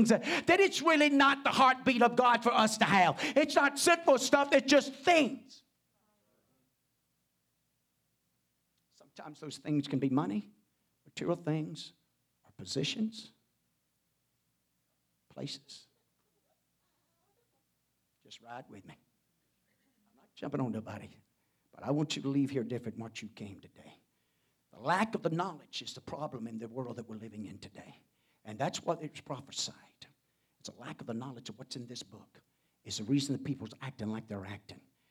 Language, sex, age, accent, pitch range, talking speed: English, male, 50-69, American, 100-160 Hz, 160 wpm